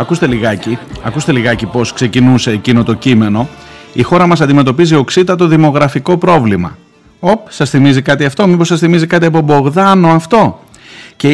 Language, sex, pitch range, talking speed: Greek, male, 115-160 Hz, 150 wpm